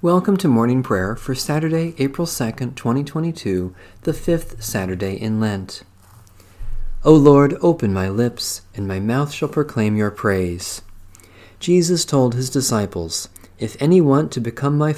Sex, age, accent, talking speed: male, 40-59, American, 145 wpm